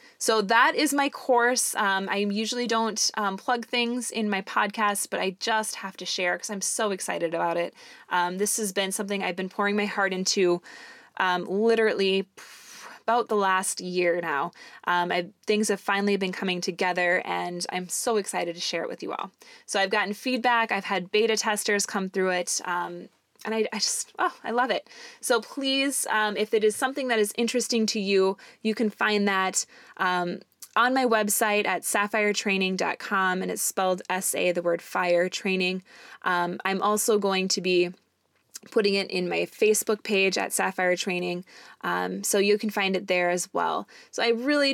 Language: English